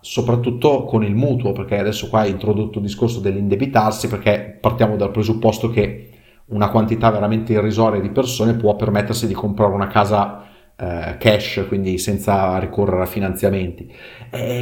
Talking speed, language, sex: 150 wpm, Italian, male